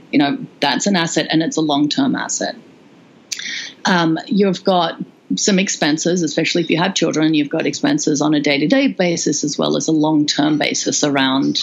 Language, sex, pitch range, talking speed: English, female, 160-260 Hz, 175 wpm